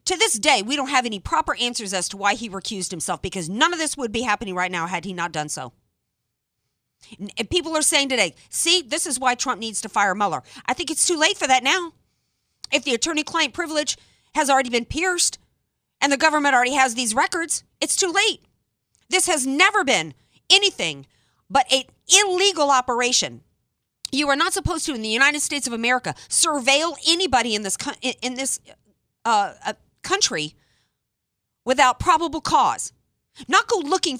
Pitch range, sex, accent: 225-315 Hz, female, American